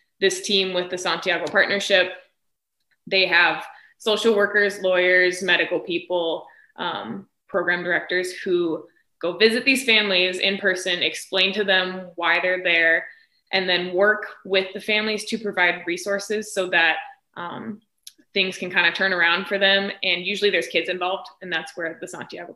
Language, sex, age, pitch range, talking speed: English, female, 20-39, 175-210 Hz, 155 wpm